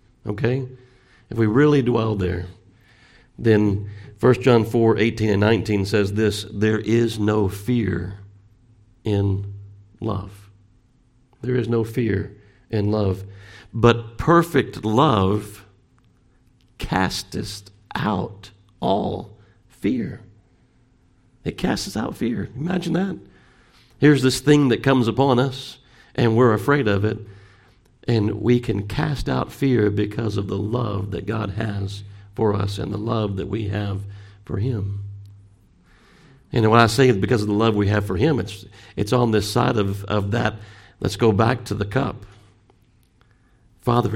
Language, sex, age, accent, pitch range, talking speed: English, male, 50-69, American, 100-120 Hz, 135 wpm